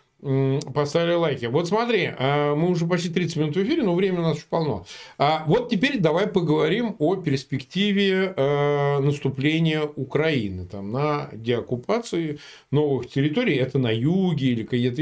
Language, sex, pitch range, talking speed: Russian, male, 130-175 Hz, 140 wpm